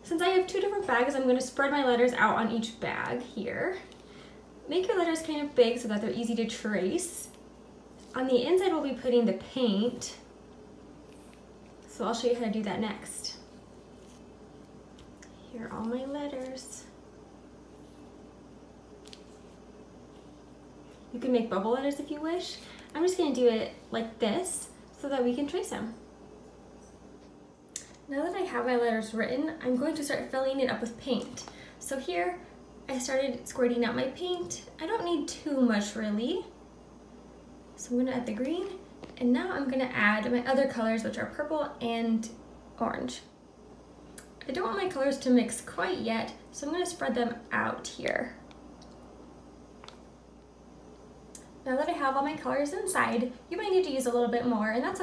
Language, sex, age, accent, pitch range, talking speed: English, female, 20-39, American, 225-290 Hz, 170 wpm